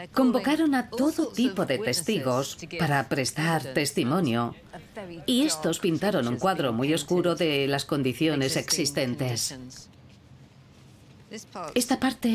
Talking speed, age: 105 wpm, 40-59